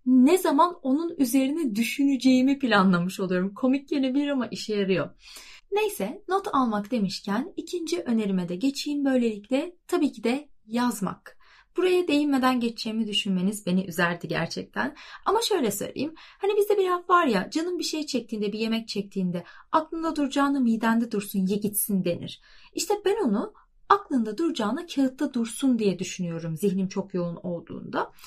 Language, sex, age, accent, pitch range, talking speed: Turkish, female, 30-49, native, 205-320 Hz, 145 wpm